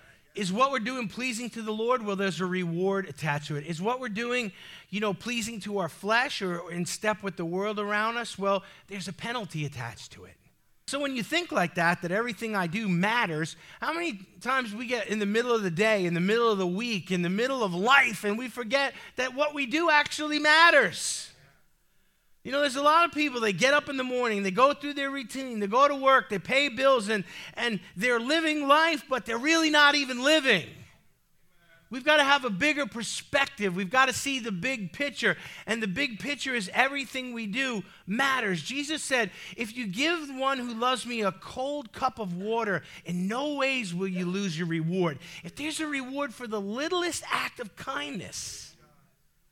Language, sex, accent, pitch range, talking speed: English, male, American, 190-260 Hz, 210 wpm